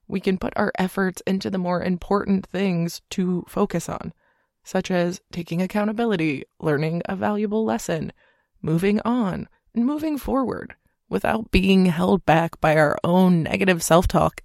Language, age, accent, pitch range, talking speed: English, 20-39, American, 170-205 Hz, 145 wpm